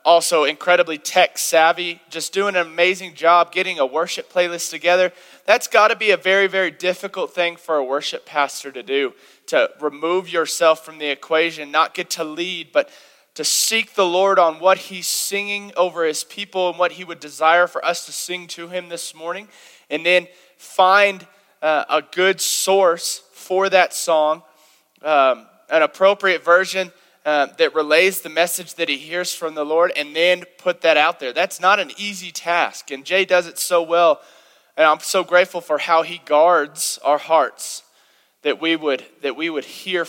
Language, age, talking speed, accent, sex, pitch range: English, 20-39, 180 wpm, American, male, 155-190 Hz